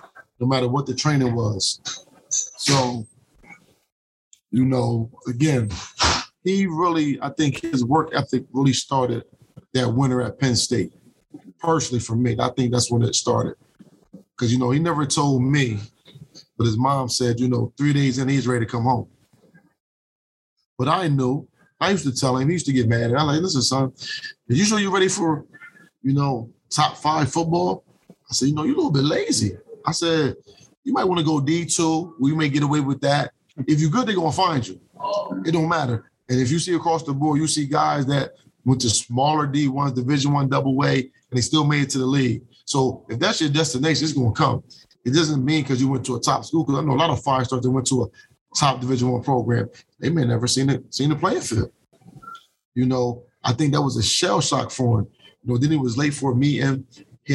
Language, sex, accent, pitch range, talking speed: English, male, American, 125-155 Hz, 220 wpm